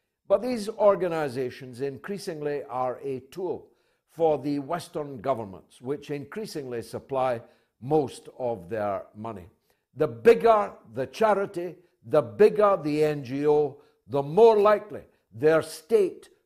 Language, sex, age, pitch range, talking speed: English, male, 60-79, 135-195 Hz, 115 wpm